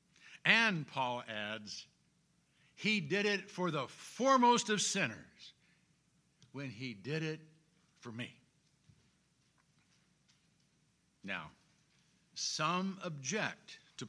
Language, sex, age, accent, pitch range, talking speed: English, male, 60-79, American, 150-205 Hz, 90 wpm